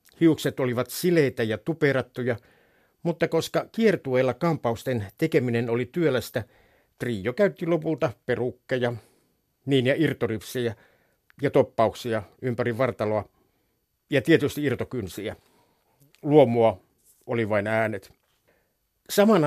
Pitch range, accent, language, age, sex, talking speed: 120-150 Hz, native, Finnish, 60-79, male, 95 wpm